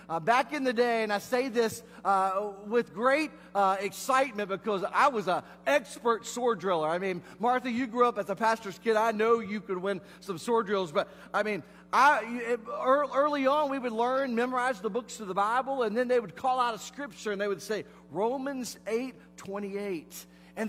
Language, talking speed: English, 205 wpm